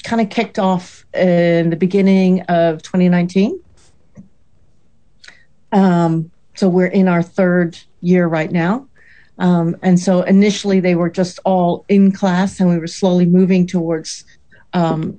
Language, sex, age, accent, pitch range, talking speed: English, female, 50-69, American, 165-195 Hz, 140 wpm